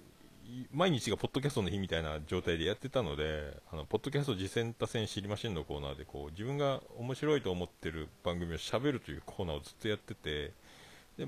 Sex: male